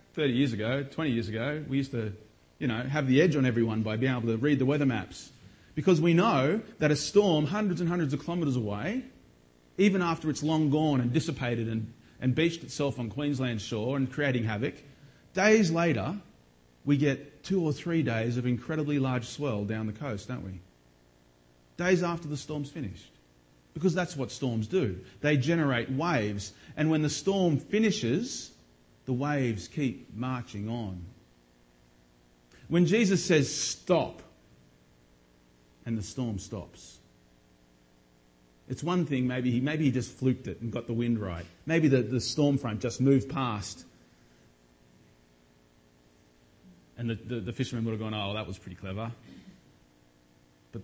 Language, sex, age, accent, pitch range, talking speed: English, male, 30-49, Australian, 90-150 Hz, 160 wpm